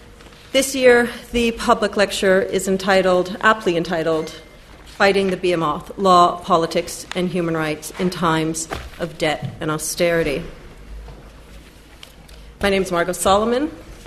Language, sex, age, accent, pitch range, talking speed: English, female, 40-59, American, 165-205 Hz, 120 wpm